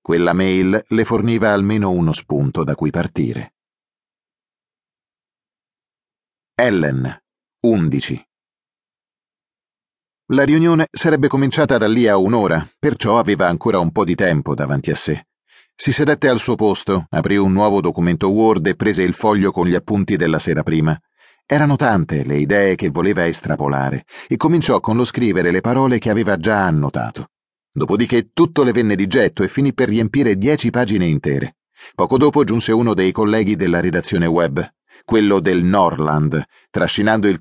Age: 40-59